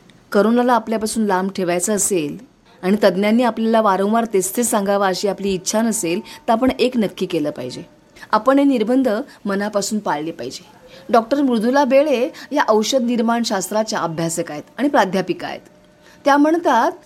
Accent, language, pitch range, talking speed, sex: native, Marathi, 195-260 Hz, 150 wpm, female